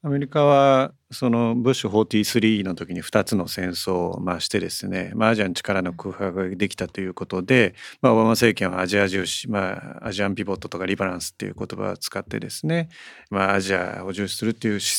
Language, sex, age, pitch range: Japanese, male, 40-59, 100-165 Hz